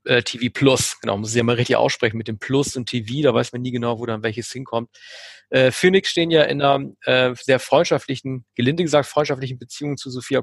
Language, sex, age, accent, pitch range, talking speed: German, male, 40-59, German, 125-150 Hz, 220 wpm